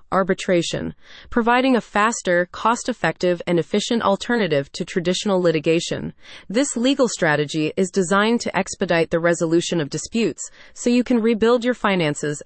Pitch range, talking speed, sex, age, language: 170-230 Hz, 135 wpm, female, 30-49, English